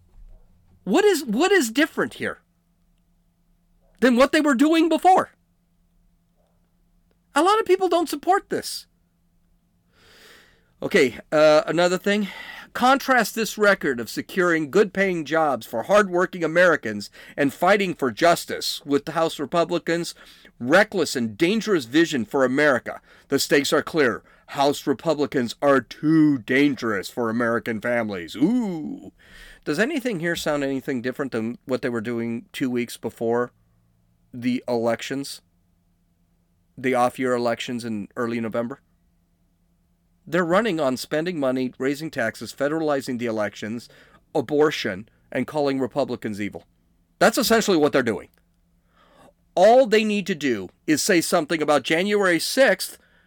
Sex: male